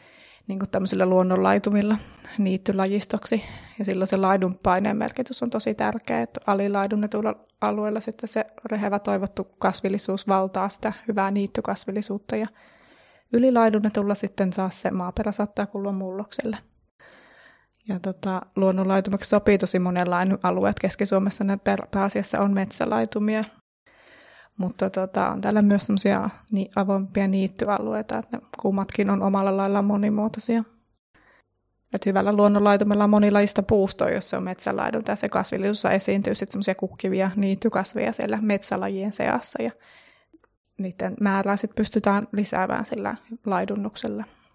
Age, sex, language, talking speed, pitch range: 20-39, female, Finnish, 115 wpm, 190-215 Hz